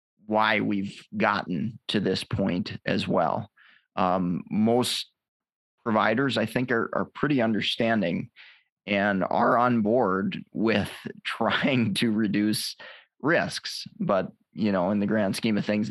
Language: English